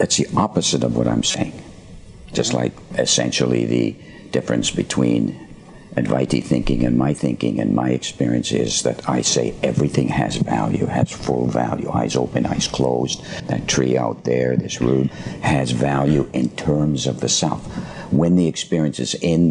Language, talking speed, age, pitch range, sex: English, 165 wpm, 60-79, 65-85 Hz, male